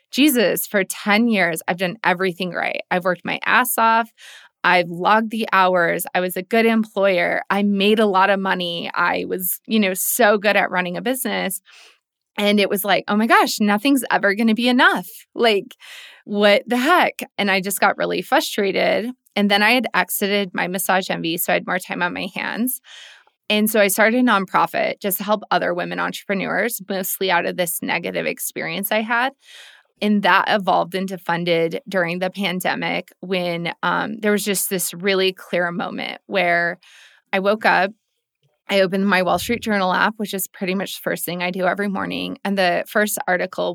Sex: female